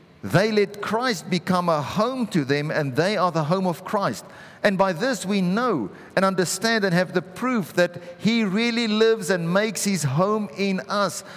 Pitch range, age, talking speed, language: 145-205 Hz, 50-69, 190 wpm, English